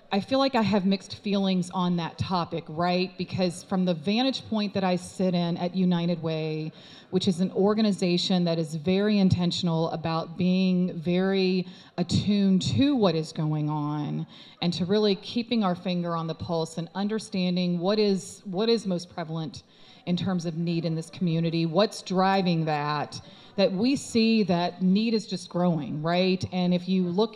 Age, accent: 30-49, American